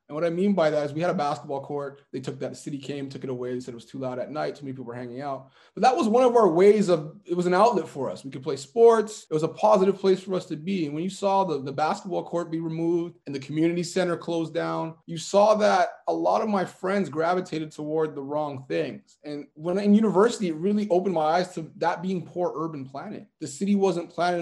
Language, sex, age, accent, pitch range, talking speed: English, male, 20-39, American, 135-175 Hz, 270 wpm